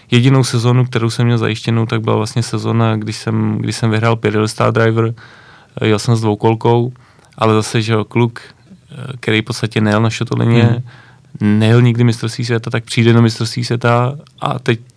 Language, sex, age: Czech, male, 20-39